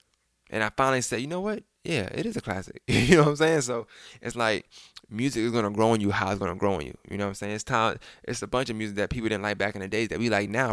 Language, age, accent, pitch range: English, 20-39, American, 100-125 Hz